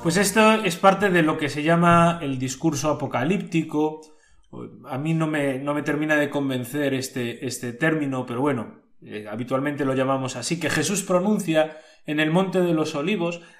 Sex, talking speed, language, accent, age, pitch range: male, 170 wpm, Spanish, Spanish, 30-49, 135-180 Hz